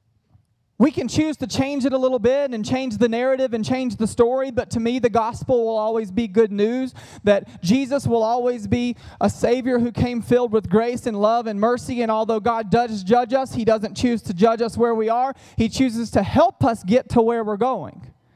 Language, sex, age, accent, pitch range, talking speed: English, male, 30-49, American, 190-250 Hz, 220 wpm